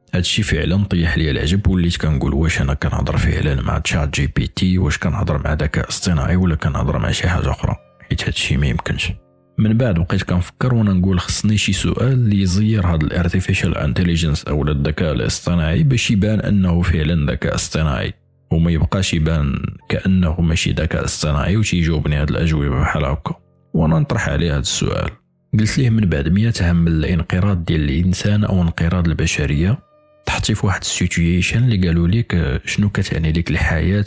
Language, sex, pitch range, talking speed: Arabic, male, 80-100 Hz, 160 wpm